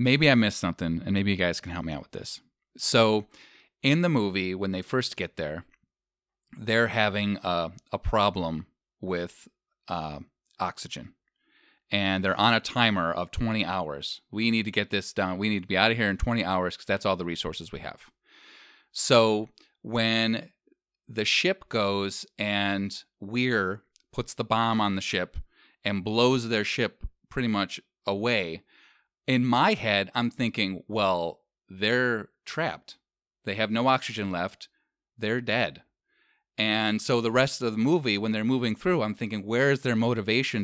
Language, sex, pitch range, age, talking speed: English, male, 95-120 Hz, 30-49, 170 wpm